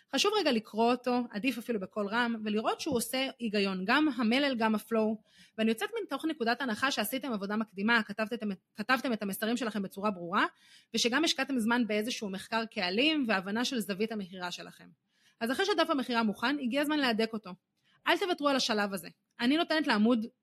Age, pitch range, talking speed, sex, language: 30-49, 210-270 Hz, 175 wpm, female, Hebrew